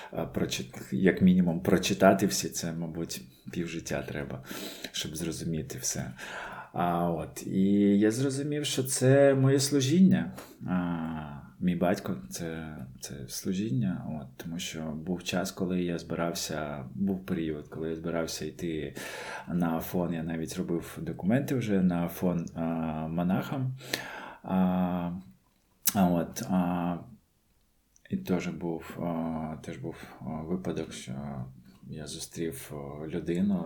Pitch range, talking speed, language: 80-95 Hz, 115 wpm, Ukrainian